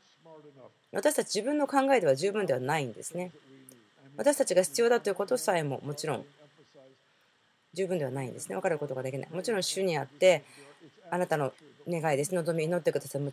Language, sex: Japanese, female